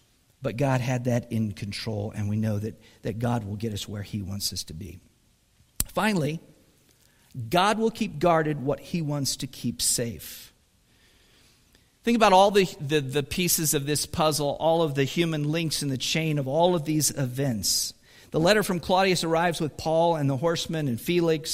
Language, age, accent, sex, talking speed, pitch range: English, 50-69, American, male, 185 wpm, 125-160 Hz